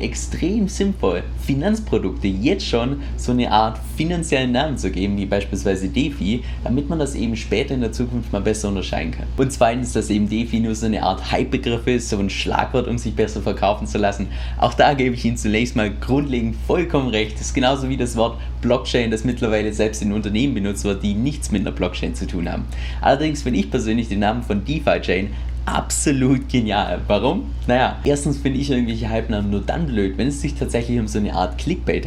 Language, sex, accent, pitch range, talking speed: German, male, German, 100-130 Hz, 200 wpm